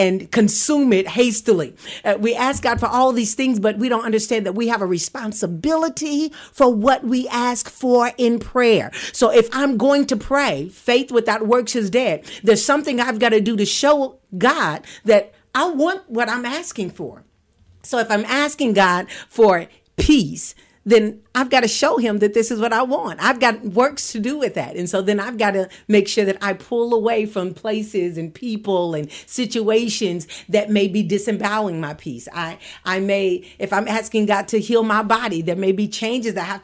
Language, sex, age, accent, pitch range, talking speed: English, female, 50-69, American, 195-245 Hz, 200 wpm